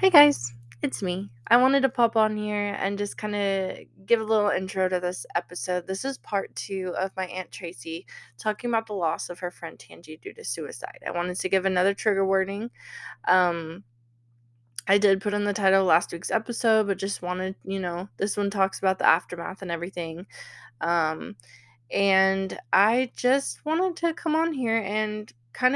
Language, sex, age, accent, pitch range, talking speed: English, female, 20-39, American, 175-210 Hz, 190 wpm